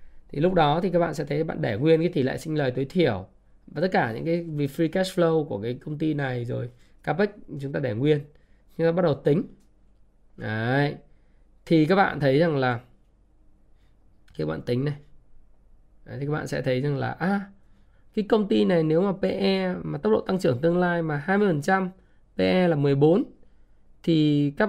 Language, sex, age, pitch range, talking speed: Vietnamese, male, 20-39, 125-165 Hz, 205 wpm